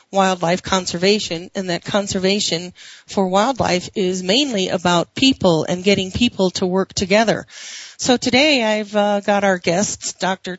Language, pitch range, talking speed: English, 175-215 Hz, 140 wpm